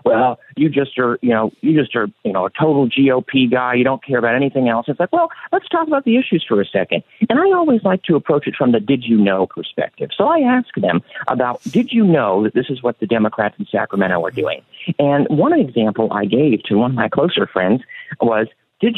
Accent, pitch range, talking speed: American, 125-200 Hz, 240 wpm